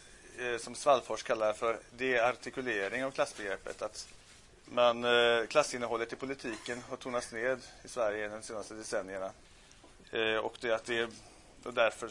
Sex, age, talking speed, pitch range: male, 30-49, 125 wpm, 105-130 Hz